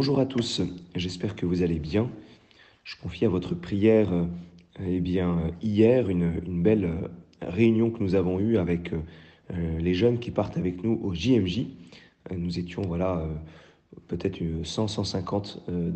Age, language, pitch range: 40-59, French, 85-110 Hz